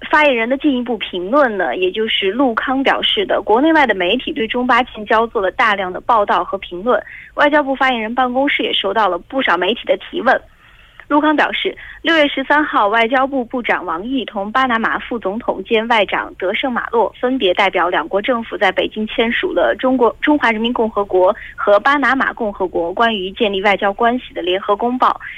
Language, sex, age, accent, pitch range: Korean, female, 20-39, Chinese, 205-280 Hz